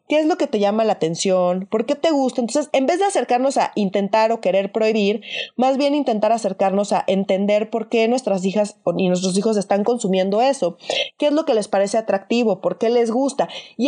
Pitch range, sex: 205-280 Hz, female